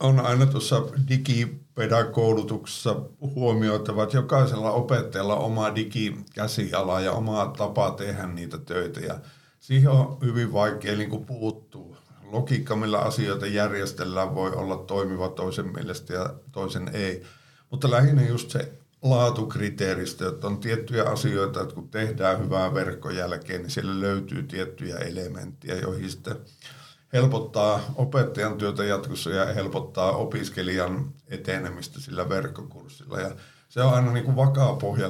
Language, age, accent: Finnish, 50-69, native